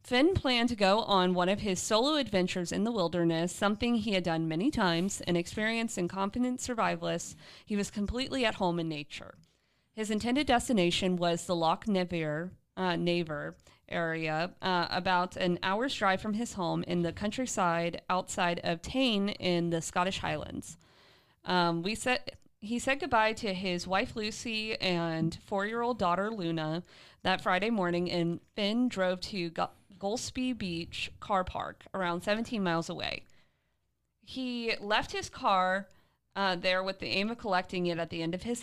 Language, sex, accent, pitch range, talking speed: English, female, American, 170-220 Hz, 165 wpm